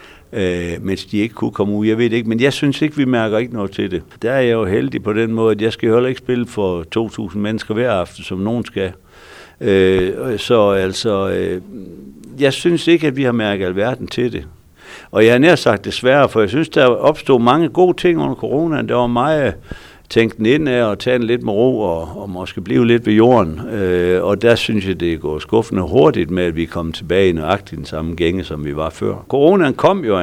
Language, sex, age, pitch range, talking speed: Danish, male, 60-79, 95-125 Hz, 240 wpm